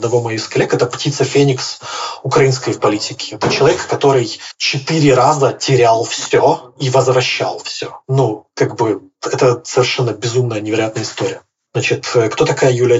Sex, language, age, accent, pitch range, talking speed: male, Russian, 20-39, native, 120-145 Hz, 145 wpm